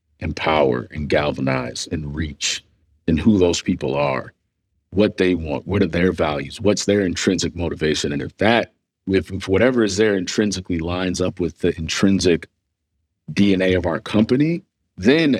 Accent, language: American, English